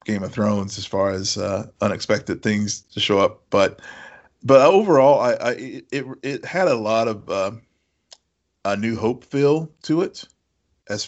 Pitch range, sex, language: 100-120 Hz, male, English